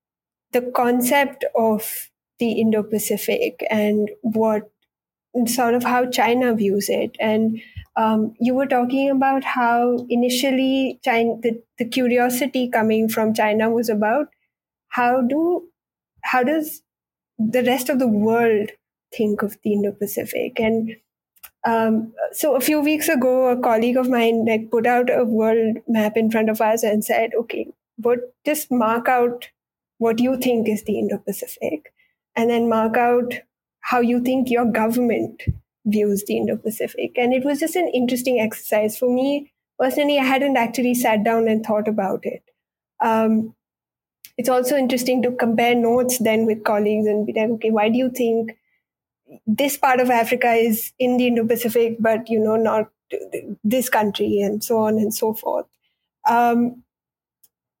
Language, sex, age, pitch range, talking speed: English, female, 10-29, 220-255 Hz, 155 wpm